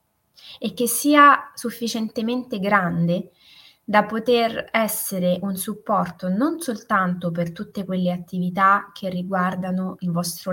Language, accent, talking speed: Italian, native, 115 wpm